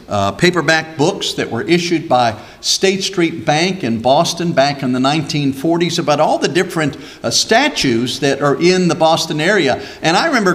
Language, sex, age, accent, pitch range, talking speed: English, male, 50-69, American, 165-215 Hz, 175 wpm